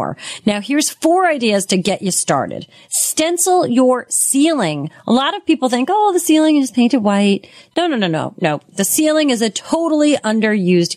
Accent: American